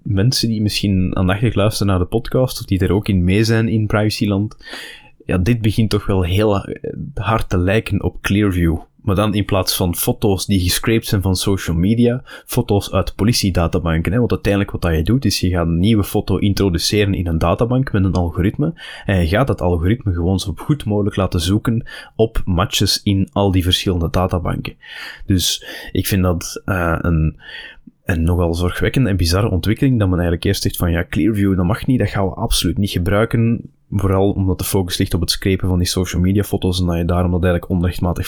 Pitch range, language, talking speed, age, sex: 90-110 Hz, Dutch, 200 wpm, 20-39, male